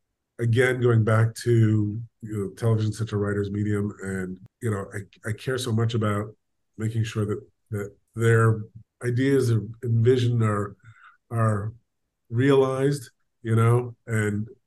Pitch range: 105-125 Hz